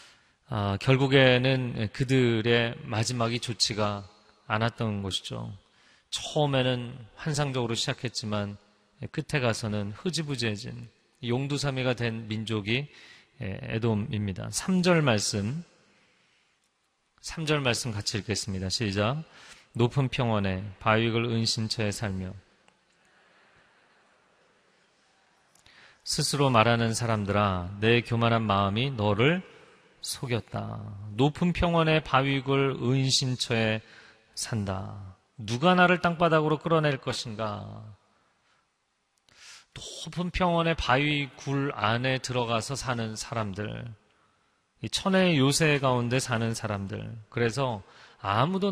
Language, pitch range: Korean, 105-135 Hz